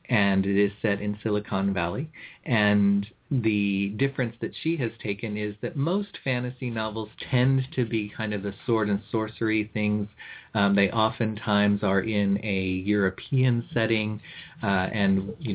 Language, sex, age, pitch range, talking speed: English, male, 40-59, 100-115 Hz, 155 wpm